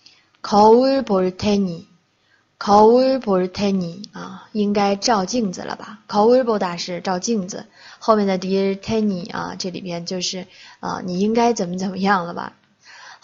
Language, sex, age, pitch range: Chinese, female, 20-39, 185-230 Hz